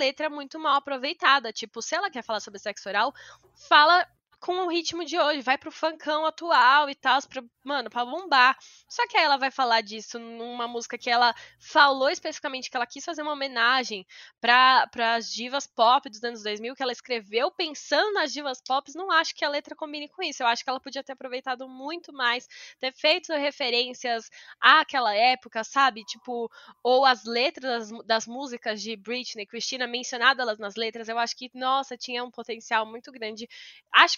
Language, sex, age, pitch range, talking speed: Portuguese, female, 10-29, 220-275 Hz, 190 wpm